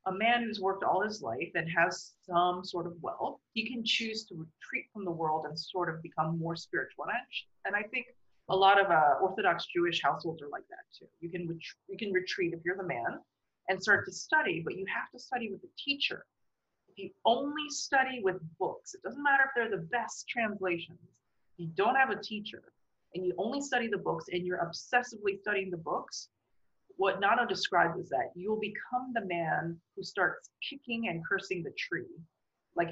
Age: 30-49